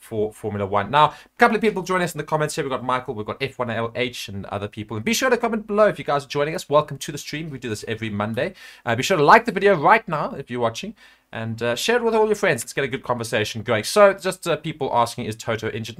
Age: 30-49